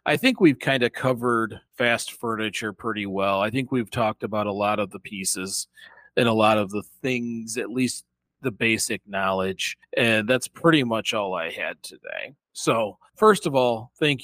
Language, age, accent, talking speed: English, 40-59, American, 185 wpm